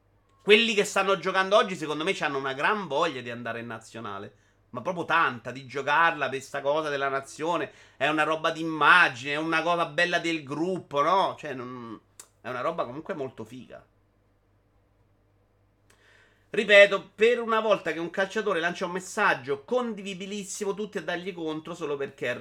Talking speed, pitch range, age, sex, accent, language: 165 wpm, 115-165 Hz, 30-49, male, native, Italian